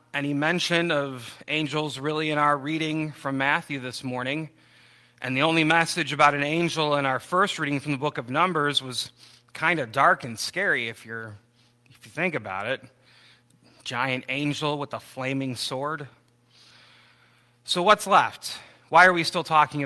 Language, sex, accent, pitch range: English, male, American, 130-165 Hz